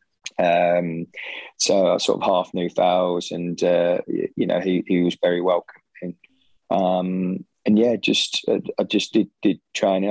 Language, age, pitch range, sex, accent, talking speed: English, 20-39, 90-100 Hz, male, British, 160 wpm